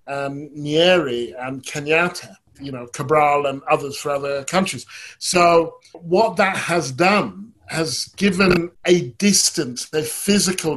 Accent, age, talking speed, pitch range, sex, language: British, 50-69, 130 wpm, 140-180 Hz, male, English